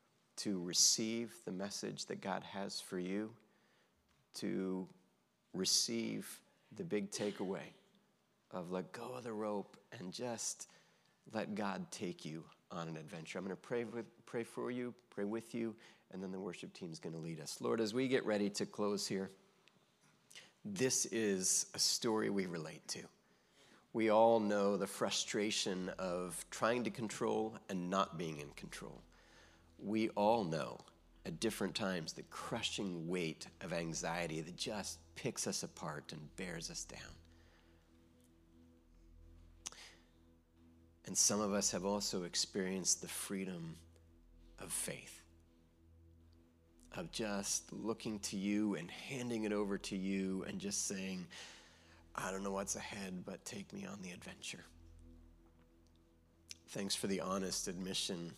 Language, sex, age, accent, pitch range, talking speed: English, male, 40-59, American, 85-105 Hz, 140 wpm